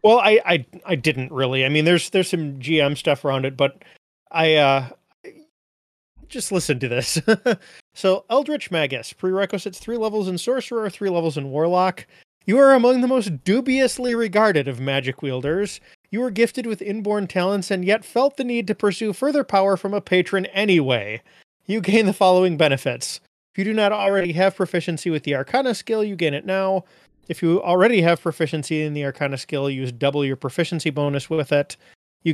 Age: 30-49